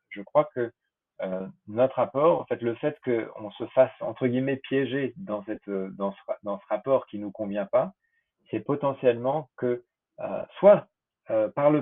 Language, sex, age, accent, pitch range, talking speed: French, male, 40-59, French, 110-140 Hz, 190 wpm